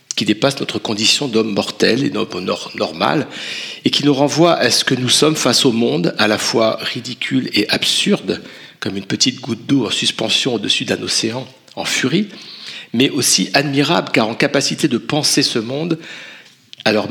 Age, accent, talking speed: 50-69, French, 175 wpm